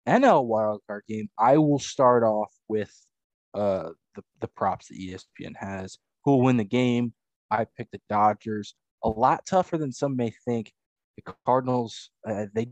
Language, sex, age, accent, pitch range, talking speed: English, male, 20-39, American, 105-130 Hz, 170 wpm